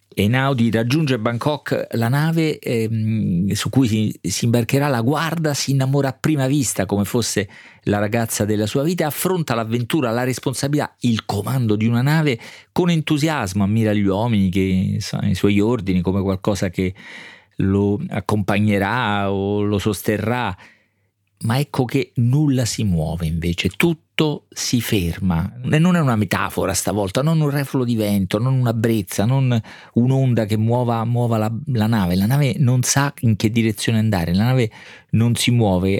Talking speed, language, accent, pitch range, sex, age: 165 wpm, Italian, native, 100-130 Hz, male, 40-59